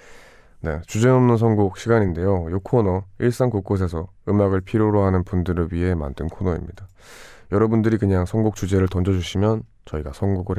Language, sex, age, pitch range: Korean, male, 20-39, 90-110 Hz